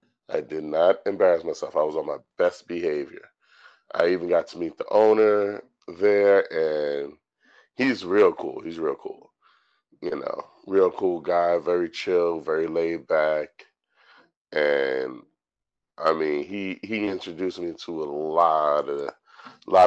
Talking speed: 140 wpm